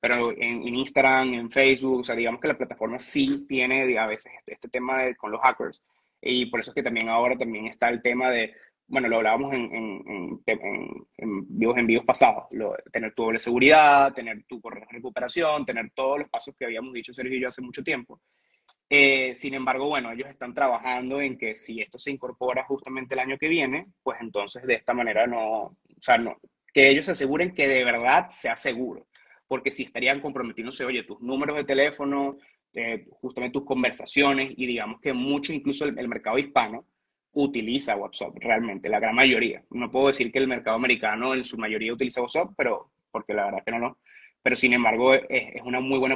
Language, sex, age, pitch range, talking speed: Spanish, male, 20-39, 120-140 Hz, 210 wpm